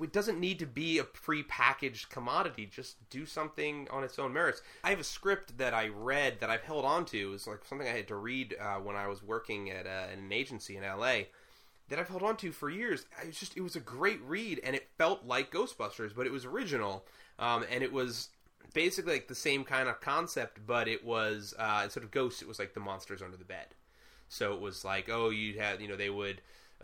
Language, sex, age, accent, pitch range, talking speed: English, male, 20-39, American, 95-125 Hz, 235 wpm